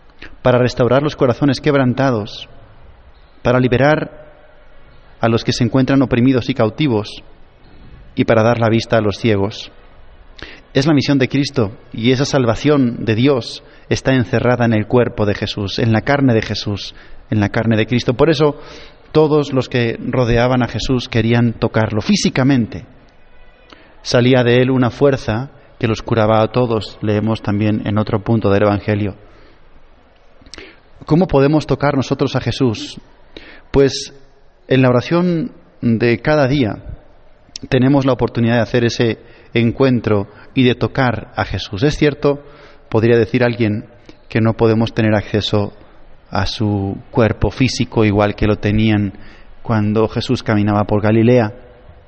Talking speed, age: 145 wpm, 30-49